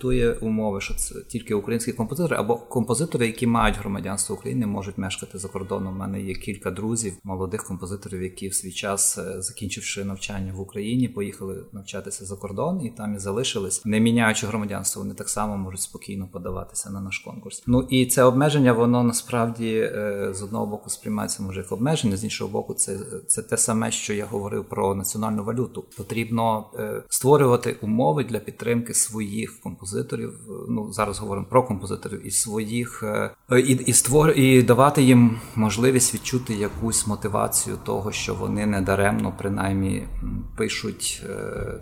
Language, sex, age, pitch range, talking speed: Ukrainian, male, 30-49, 100-120 Hz, 155 wpm